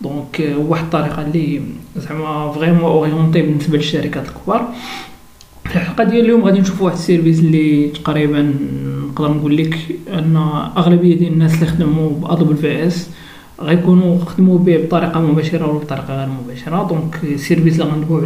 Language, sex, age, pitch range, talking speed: Arabic, male, 40-59, 150-180 Hz, 135 wpm